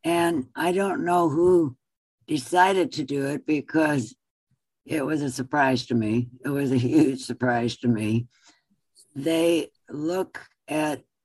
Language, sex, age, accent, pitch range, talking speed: English, female, 60-79, American, 125-160 Hz, 140 wpm